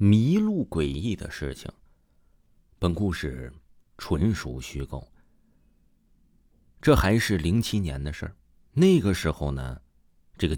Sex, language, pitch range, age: male, Chinese, 75-115 Hz, 30-49